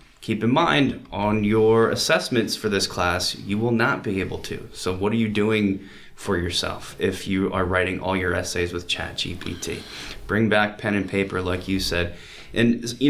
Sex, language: male, English